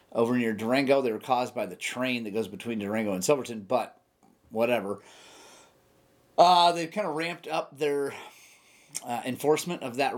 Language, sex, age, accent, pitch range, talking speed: English, male, 30-49, American, 115-150 Hz, 165 wpm